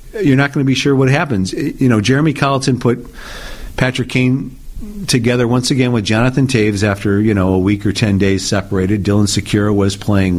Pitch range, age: 100-125 Hz, 50-69